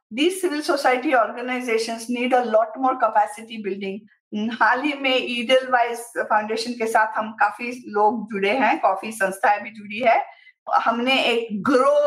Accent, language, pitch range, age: native, Hindi, 220-270 Hz, 50-69